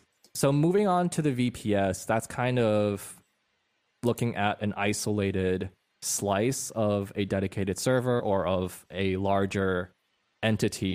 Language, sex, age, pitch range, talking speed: English, male, 20-39, 95-110 Hz, 125 wpm